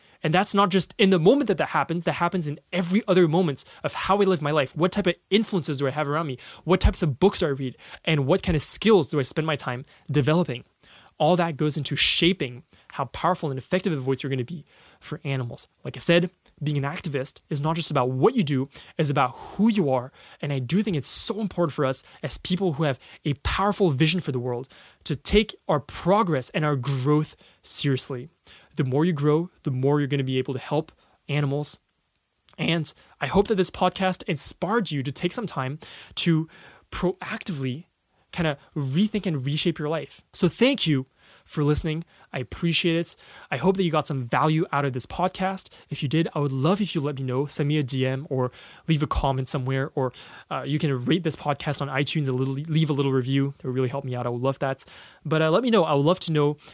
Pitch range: 140-180 Hz